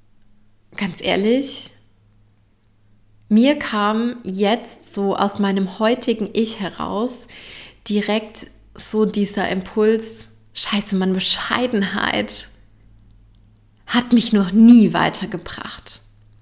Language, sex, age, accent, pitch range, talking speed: German, female, 20-39, German, 195-245 Hz, 85 wpm